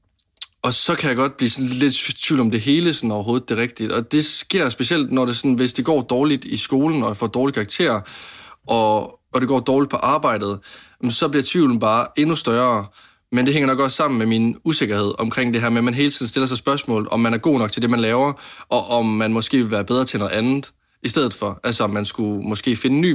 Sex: male